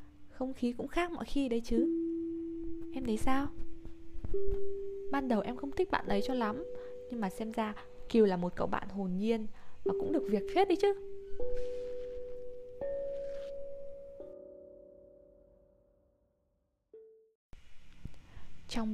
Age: 20-39